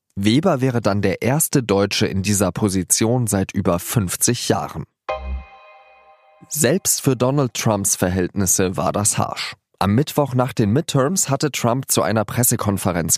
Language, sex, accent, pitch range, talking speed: German, male, German, 100-130 Hz, 140 wpm